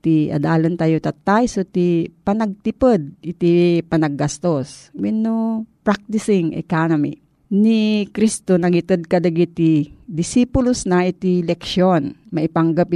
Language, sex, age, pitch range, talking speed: Filipino, female, 40-59, 170-225 Hz, 95 wpm